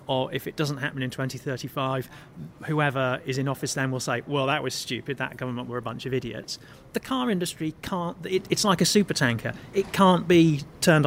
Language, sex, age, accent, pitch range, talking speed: English, male, 40-59, British, 130-170 Hz, 205 wpm